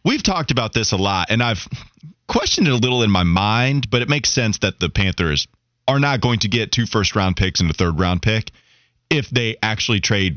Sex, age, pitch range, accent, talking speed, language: male, 30-49, 90-130 Hz, American, 220 wpm, English